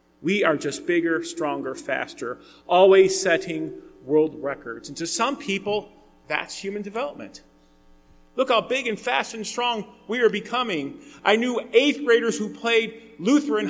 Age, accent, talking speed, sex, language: 40-59, American, 150 wpm, male, English